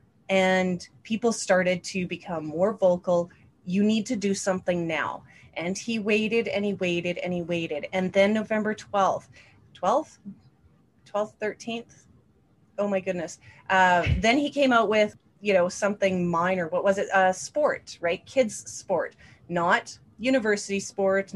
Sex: female